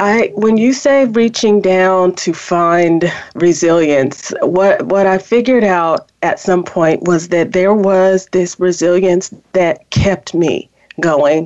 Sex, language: female, English